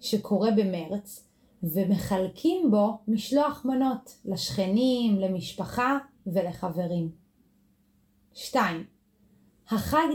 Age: 30-49